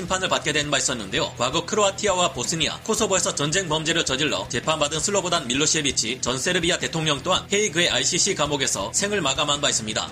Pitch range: 145-190 Hz